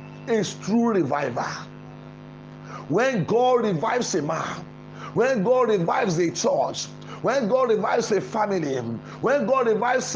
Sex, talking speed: male, 125 wpm